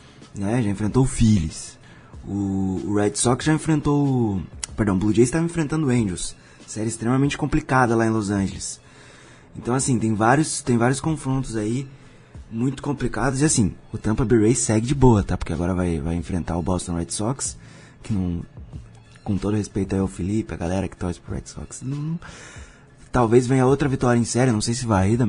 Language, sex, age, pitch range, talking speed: Portuguese, male, 20-39, 95-120 Hz, 195 wpm